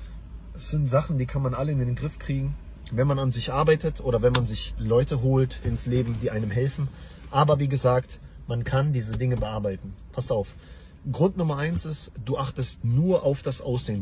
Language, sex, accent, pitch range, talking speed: English, male, German, 95-145 Hz, 200 wpm